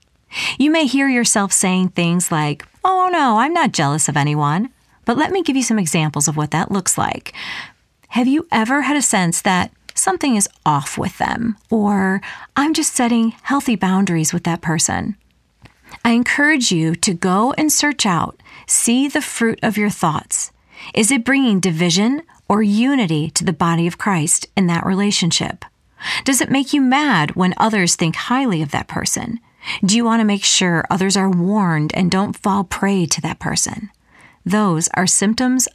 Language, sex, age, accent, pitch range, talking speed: English, female, 40-59, American, 180-235 Hz, 180 wpm